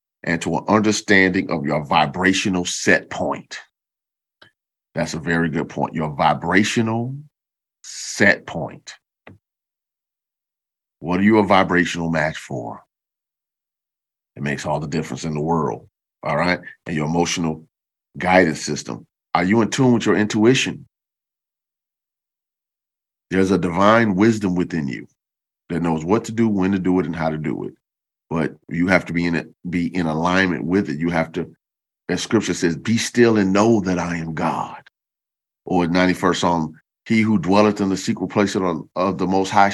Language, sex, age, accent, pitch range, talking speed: English, male, 40-59, American, 85-105 Hz, 160 wpm